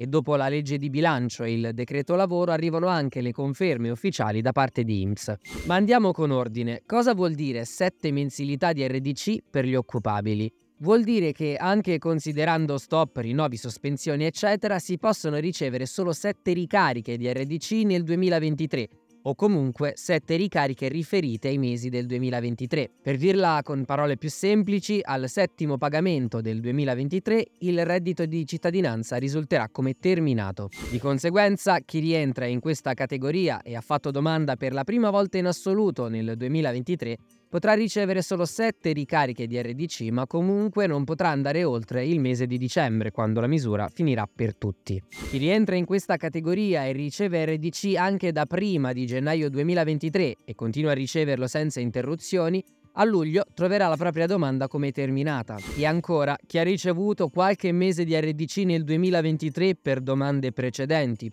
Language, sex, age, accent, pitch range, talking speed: Italian, male, 20-39, native, 130-180 Hz, 160 wpm